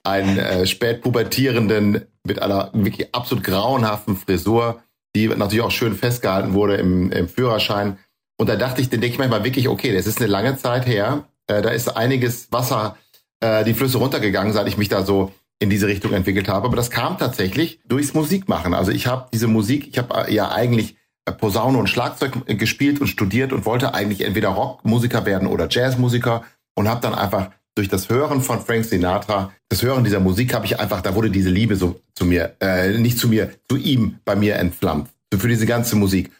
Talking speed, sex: 200 wpm, male